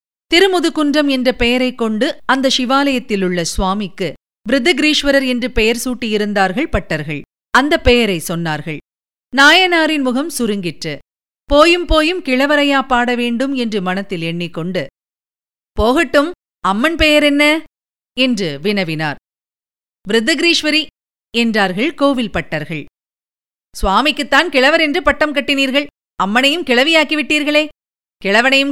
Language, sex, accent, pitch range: Tamil, female, native, 195-285 Hz